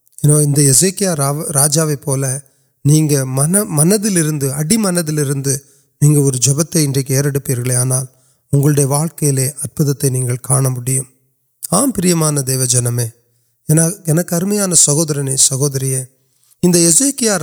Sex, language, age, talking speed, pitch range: male, Urdu, 30-49, 65 wpm, 140-180 Hz